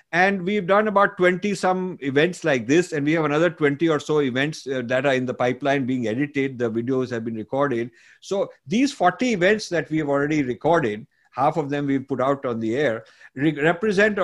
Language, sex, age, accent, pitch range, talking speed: English, male, 50-69, Indian, 140-185 Hz, 210 wpm